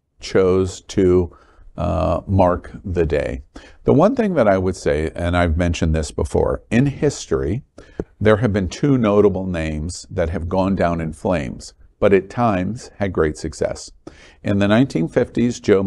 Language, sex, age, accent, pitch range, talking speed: English, male, 50-69, American, 85-110 Hz, 160 wpm